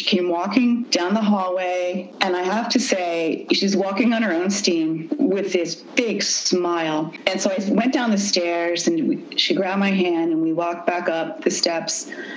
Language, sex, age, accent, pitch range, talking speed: English, female, 30-49, American, 175-275 Hz, 195 wpm